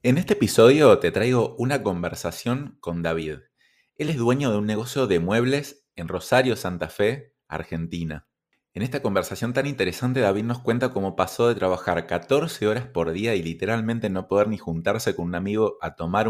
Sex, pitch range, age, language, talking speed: male, 90-125 Hz, 20-39, Spanish, 180 wpm